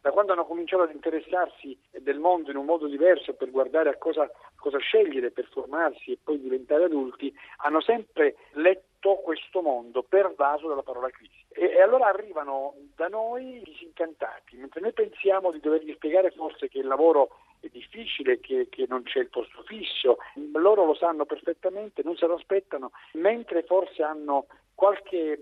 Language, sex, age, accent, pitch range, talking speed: Italian, male, 50-69, native, 140-205 Hz, 165 wpm